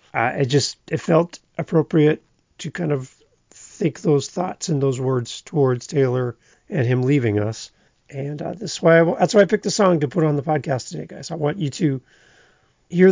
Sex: male